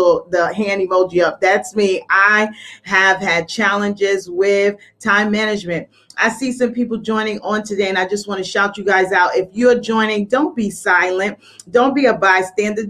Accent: American